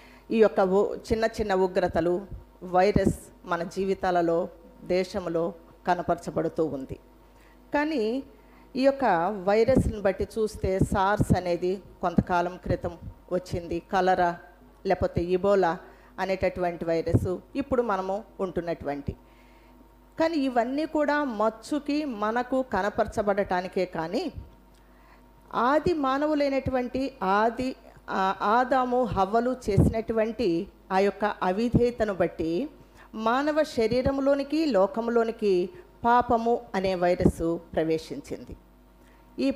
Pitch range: 180-240 Hz